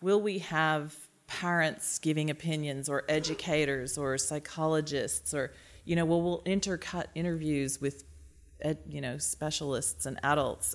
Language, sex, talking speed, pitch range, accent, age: English, female, 130 wpm, 140-170 Hz, American, 40-59